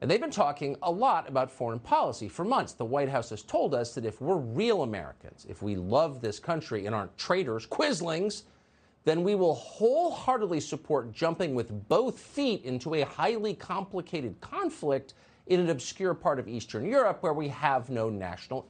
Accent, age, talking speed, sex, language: American, 50-69, 185 wpm, male, English